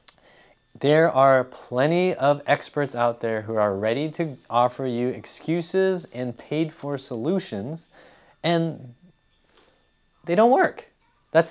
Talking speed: 120 wpm